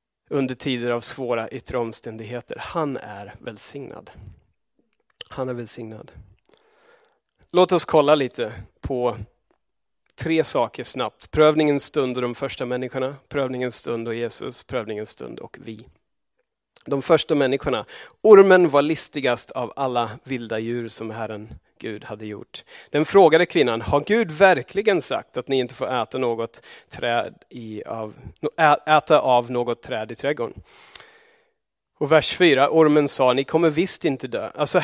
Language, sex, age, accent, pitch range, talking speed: Swedish, male, 30-49, native, 120-170 Hz, 140 wpm